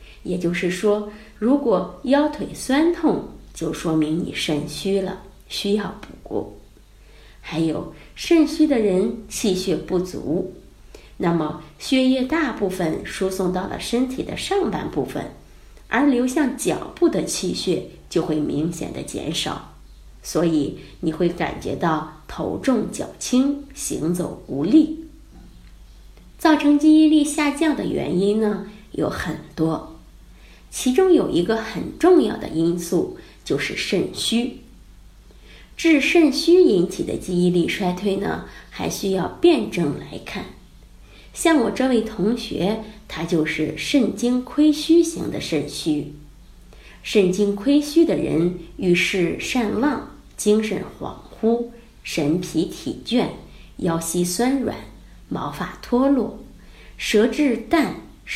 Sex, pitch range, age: female, 175-290 Hz, 20-39